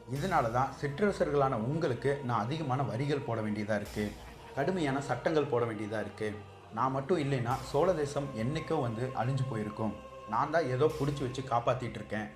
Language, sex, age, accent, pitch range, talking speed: Tamil, male, 30-49, native, 115-140 Hz, 145 wpm